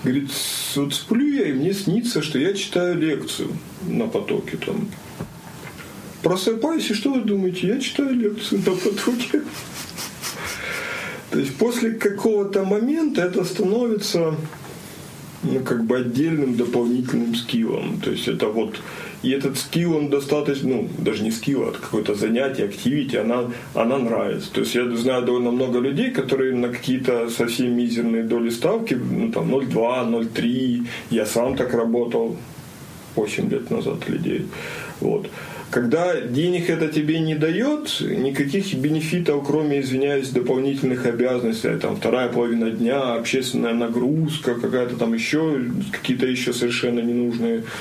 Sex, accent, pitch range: male, native, 120-160 Hz